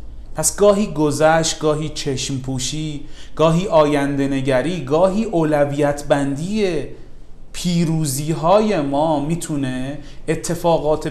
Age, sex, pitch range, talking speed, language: 40-59, male, 130-170 Hz, 80 wpm, Persian